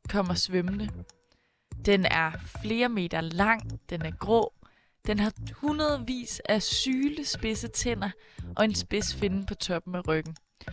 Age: 20-39